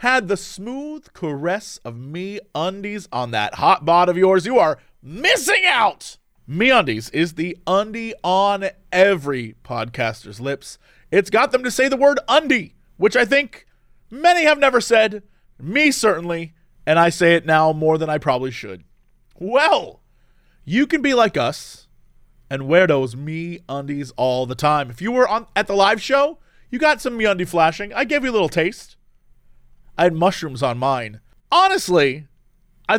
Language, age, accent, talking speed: English, 30-49, American, 170 wpm